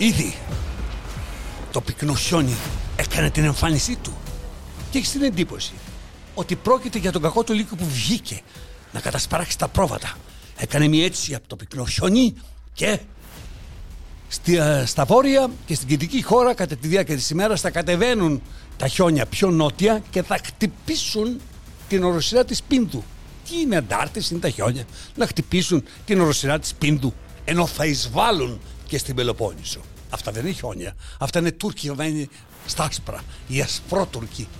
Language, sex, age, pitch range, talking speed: Greek, male, 60-79, 110-175 Hz, 150 wpm